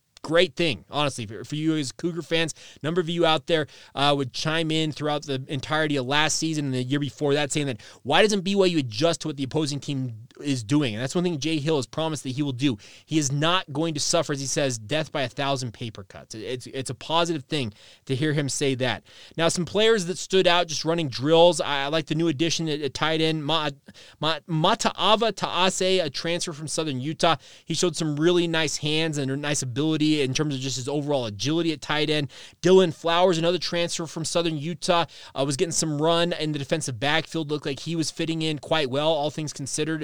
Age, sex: 20-39, male